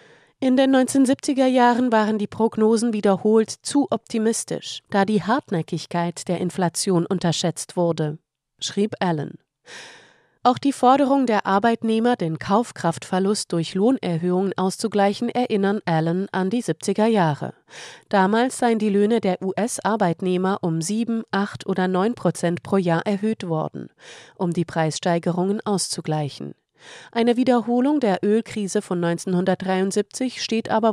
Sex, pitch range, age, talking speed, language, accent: female, 175-225 Hz, 30-49, 120 wpm, German, German